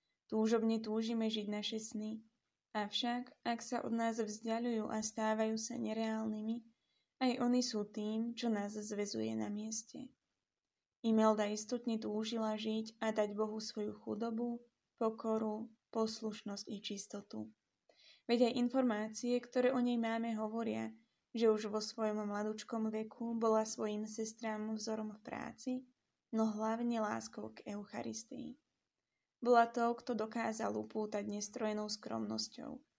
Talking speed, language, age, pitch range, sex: 125 wpm, Slovak, 20-39, 210-230 Hz, female